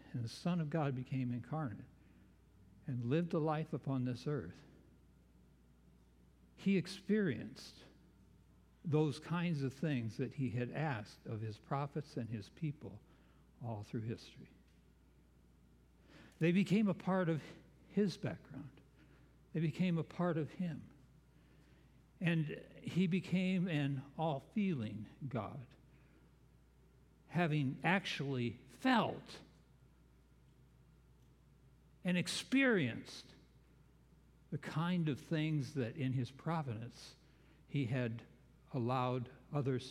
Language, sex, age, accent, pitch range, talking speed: English, male, 60-79, American, 125-165 Hz, 105 wpm